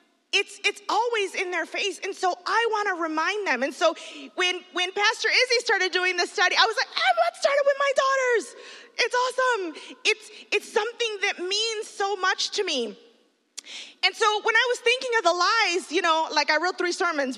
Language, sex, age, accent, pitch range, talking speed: English, female, 20-39, American, 245-380 Hz, 205 wpm